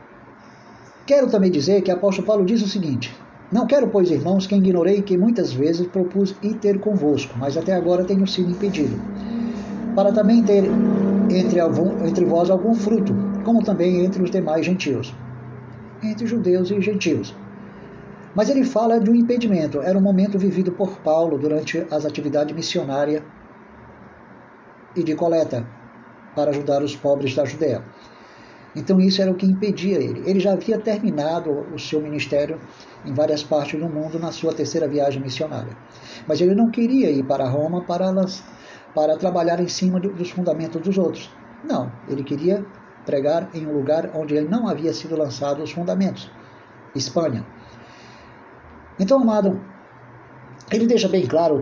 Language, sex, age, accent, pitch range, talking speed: Spanish, male, 50-69, Brazilian, 150-200 Hz, 155 wpm